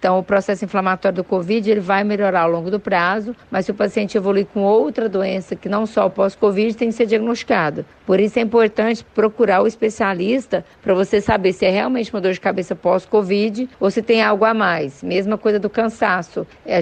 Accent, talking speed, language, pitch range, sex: Brazilian, 205 wpm, Portuguese, 190-225 Hz, female